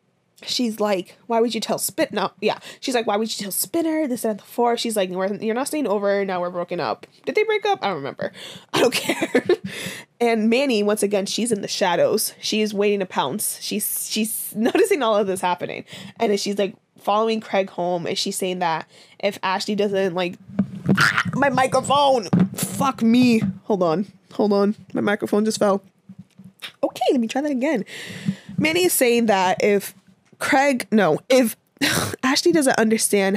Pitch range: 190-250 Hz